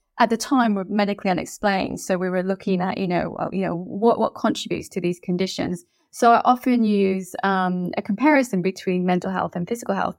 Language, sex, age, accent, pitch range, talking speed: English, female, 20-39, British, 195-250 Hz, 200 wpm